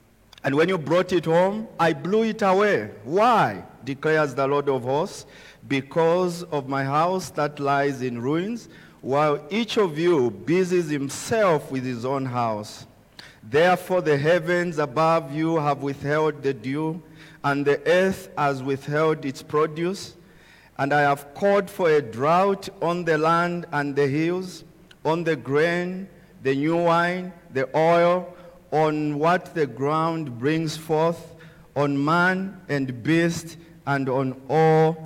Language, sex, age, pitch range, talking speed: English, male, 50-69, 130-170 Hz, 145 wpm